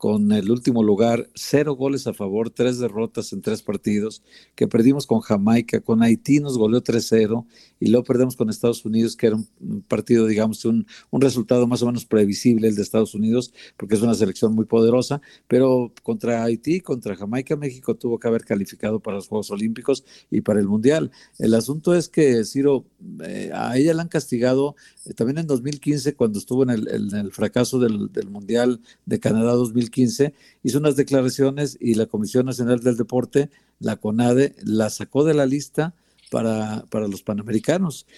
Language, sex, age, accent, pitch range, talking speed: Spanish, male, 50-69, Mexican, 115-140 Hz, 180 wpm